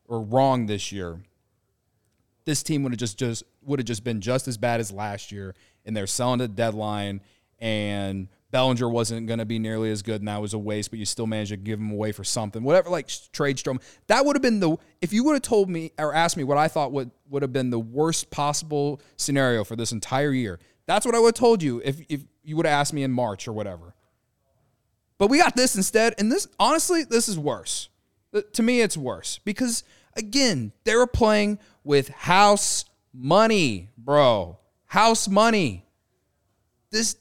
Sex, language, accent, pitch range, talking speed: male, English, American, 110-185 Hz, 200 wpm